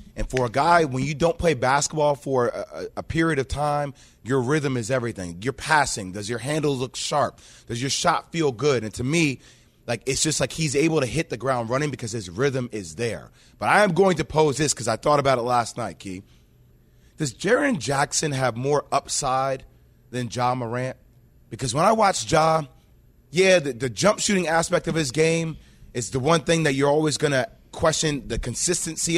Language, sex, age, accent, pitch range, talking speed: English, male, 30-49, American, 125-165 Hz, 205 wpm